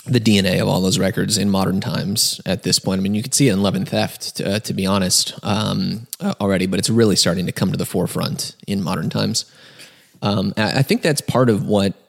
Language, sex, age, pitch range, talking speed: English, male, 20-39, 95-115 Hz, 240 wpm